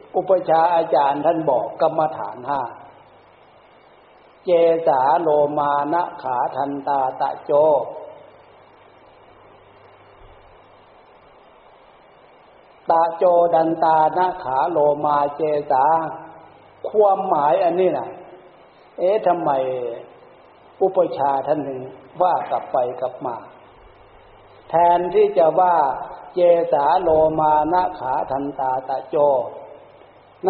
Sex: male